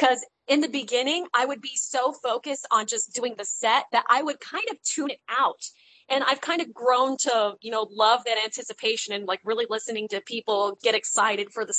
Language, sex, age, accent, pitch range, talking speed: English, female, 20-39, American, 220-285 Hz, 220 wpm